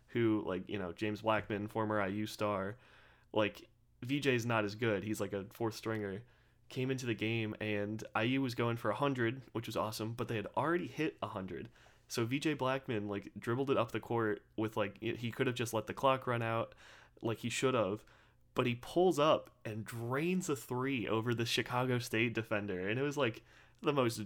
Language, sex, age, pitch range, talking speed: English, male, 30-49, 110-125 Hz, 200 wpm